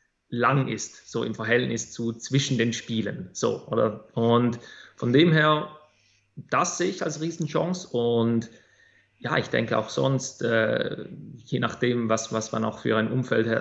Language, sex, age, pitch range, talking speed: German, male, 30-49, 110-130 Hz, 160 wpm